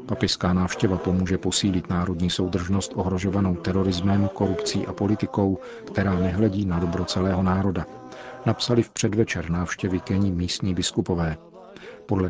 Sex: male